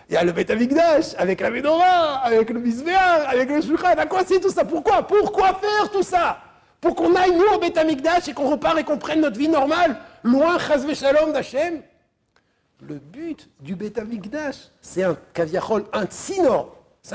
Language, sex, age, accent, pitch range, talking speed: French, male, 60-79, French, 240-330 Hz, 180 wpm